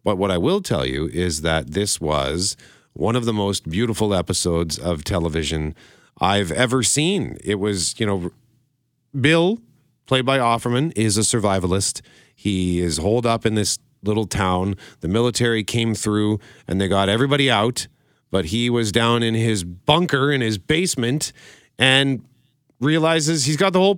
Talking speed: 165 wpm